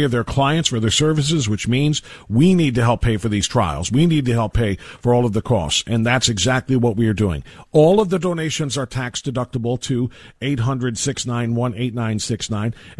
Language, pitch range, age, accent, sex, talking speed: English, 130-180 Hz, 50-69, American, male, 190 wpm